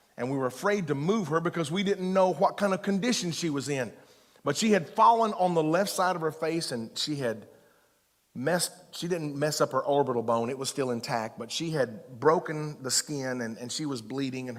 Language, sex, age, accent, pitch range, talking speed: English, male, 40-59, American, 125-170 Hz, 230 wpm